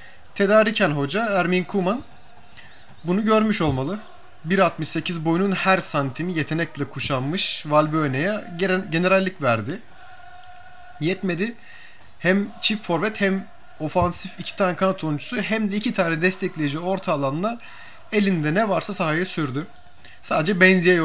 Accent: native